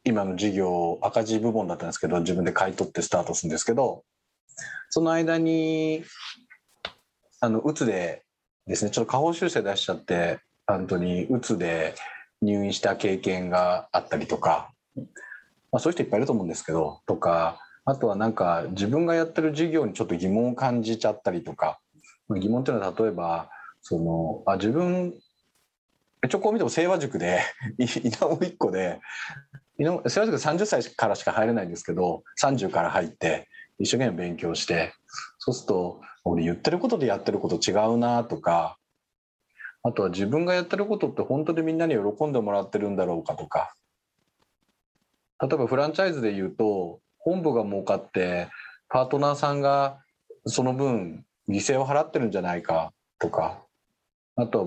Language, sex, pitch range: Japanese, male, 95-155 Hz